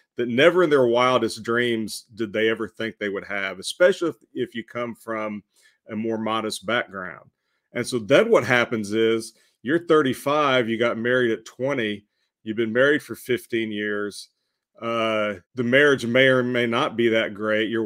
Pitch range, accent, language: 110-125 Hz, American, English